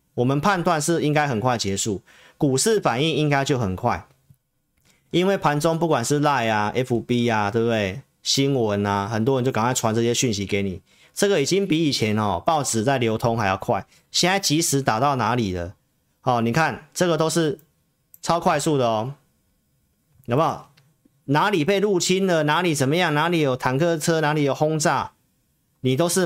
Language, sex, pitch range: Chinese, male, 110-150 Hz